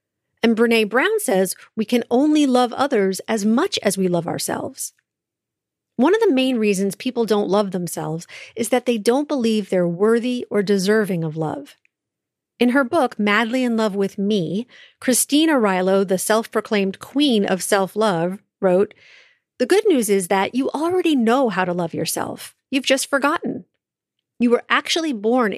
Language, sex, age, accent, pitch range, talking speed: English, female, 40-59, American, 195-255 Hz, 165 wpm